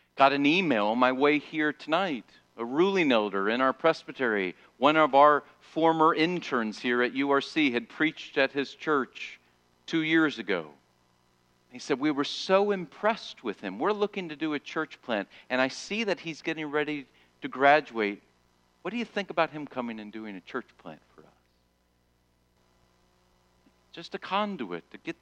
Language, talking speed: English, 175 wpm